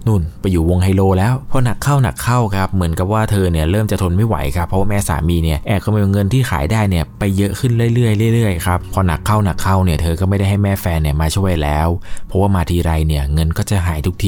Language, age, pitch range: Thai, 20-39, 85-100 Hz